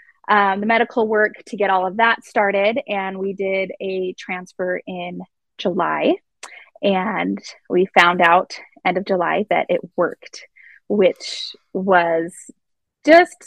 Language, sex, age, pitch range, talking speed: English, female, 20-39, 190-240 Hz, 135 wpm